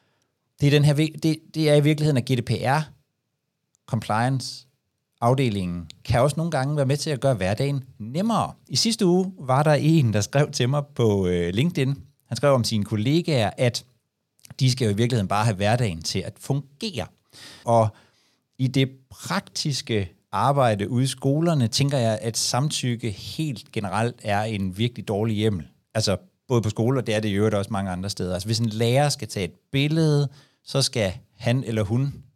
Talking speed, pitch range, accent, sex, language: 170 wpm, 105-140 Hz, native, male, Danish